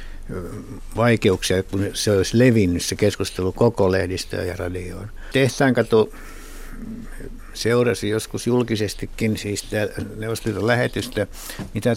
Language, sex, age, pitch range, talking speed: Finnish, male, 60-79, 95-110 Hz, 95 wpm